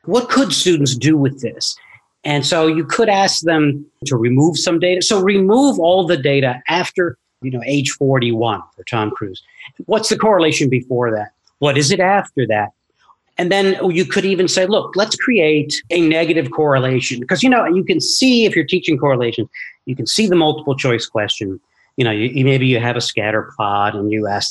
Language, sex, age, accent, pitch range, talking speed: English, male, 40-59, American, 125-180 Hz, 195 wpm